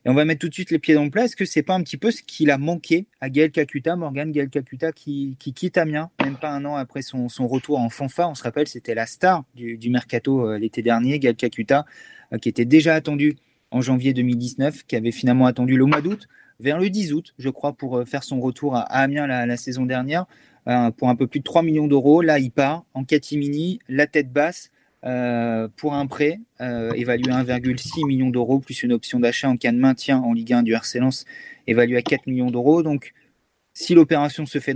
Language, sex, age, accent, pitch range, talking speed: French, male, 30-49, French, 125-155 Hz, 235 wpm